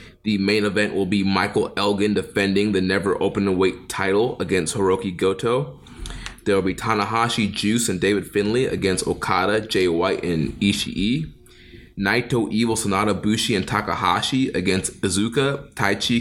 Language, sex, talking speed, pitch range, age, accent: English, male, 145 wpm, 95-115 Hz, 20-39, American